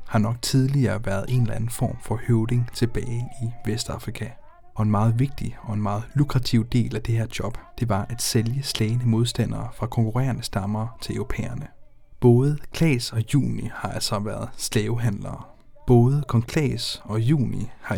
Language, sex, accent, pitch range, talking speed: Danish, male, native, 110-130 Hz, 170 wpm